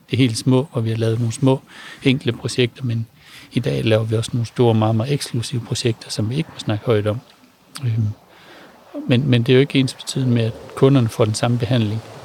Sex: male